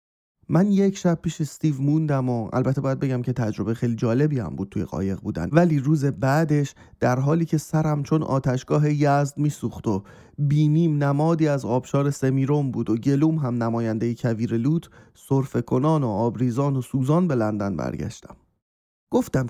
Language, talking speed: Persian, 160 wpm